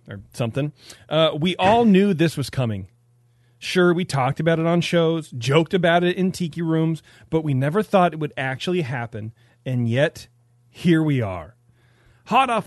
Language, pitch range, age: English, 120-185 Hz, 30-49